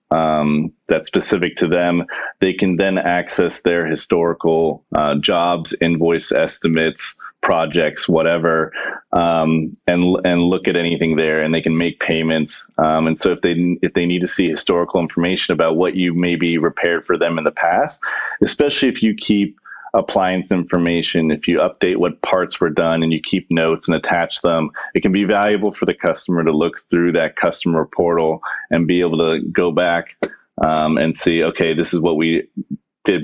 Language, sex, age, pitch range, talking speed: English, male, 30-49, 80-95 Hz, 180 wpm